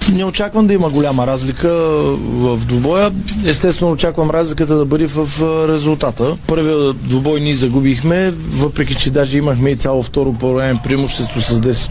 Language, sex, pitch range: Bulgarian, male, 135-155 Hz